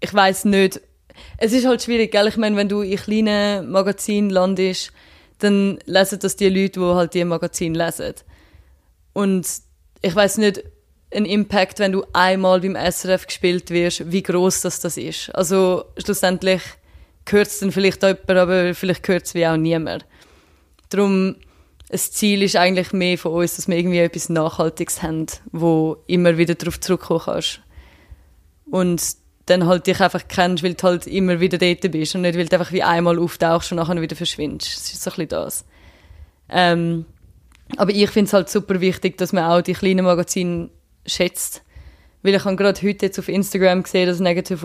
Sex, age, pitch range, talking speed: female, 20-39, 170-195 Hz, 180 wpm